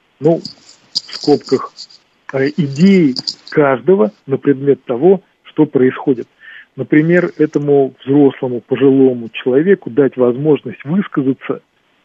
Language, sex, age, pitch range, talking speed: Russian, male, 40-59, 125-155 Hz, 90 wpm